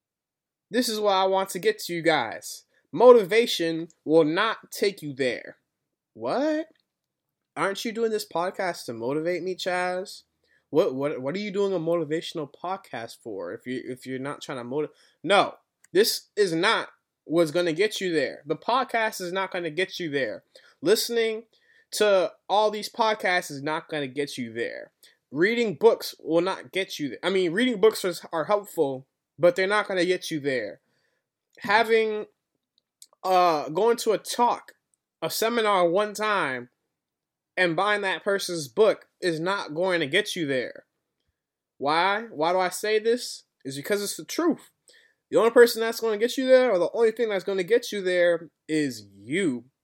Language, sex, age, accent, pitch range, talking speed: English, male, 20-39, American, 165-225 Hz, 180 wpm